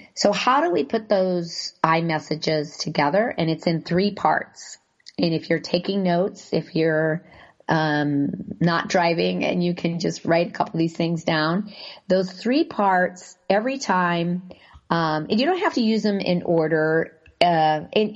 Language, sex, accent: English, female, American